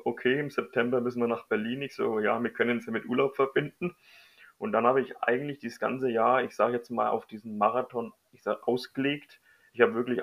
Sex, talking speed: male, 215 wpm